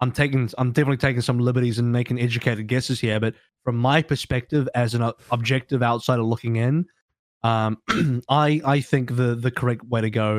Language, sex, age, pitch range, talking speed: English, male, 20-39, 110-130 Hz, 185 wpm